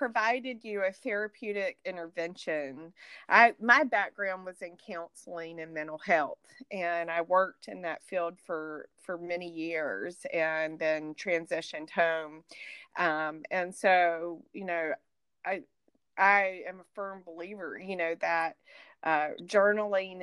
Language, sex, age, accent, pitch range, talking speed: English, female, 30-49, American, 170-205 Hz, 130 wpm